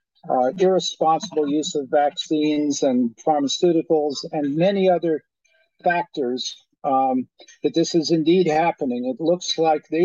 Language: English